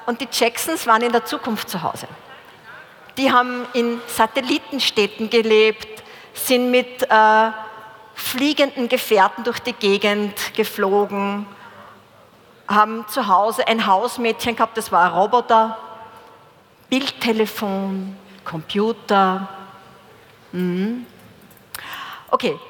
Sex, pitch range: female, 205-255 Hz